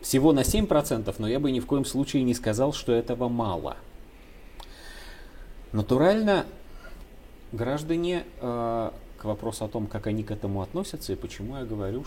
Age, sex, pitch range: 30-49, male, 95-130 Hz